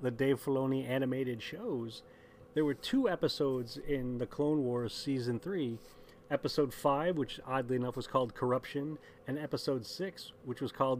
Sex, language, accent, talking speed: male, English, American, 160 wpm